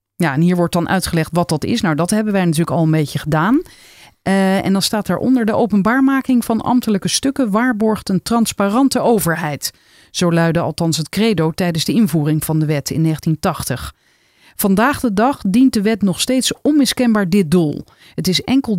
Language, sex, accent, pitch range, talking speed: Dutch, female, Dutch, 165-245 Hz, 190 wpm